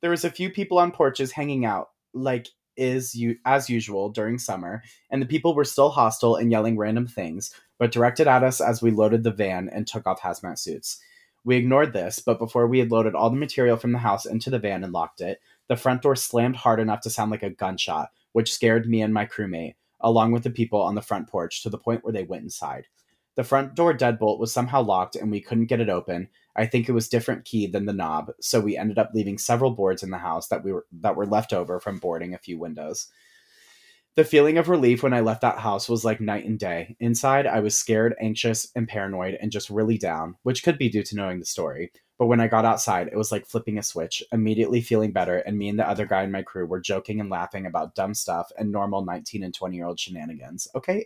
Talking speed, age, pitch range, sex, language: 245 wpm, 30-49, 105-125 Hz, male, English